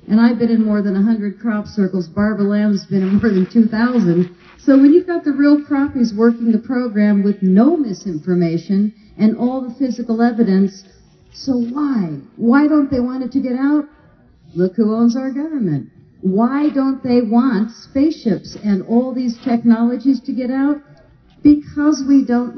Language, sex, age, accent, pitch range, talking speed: English, female, 50-69, American, 190-260 Hz, 170 wpm